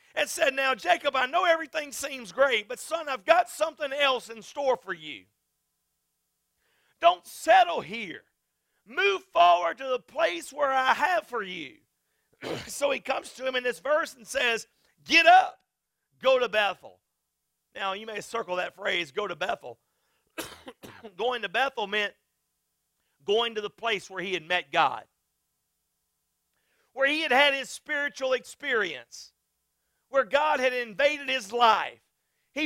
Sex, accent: male, American